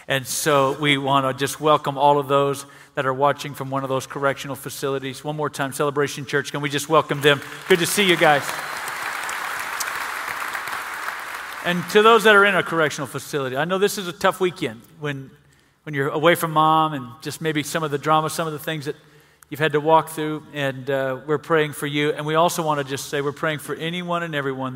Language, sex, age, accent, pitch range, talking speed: English, male, 50-69, American, 130-150 Hz, 225 wpm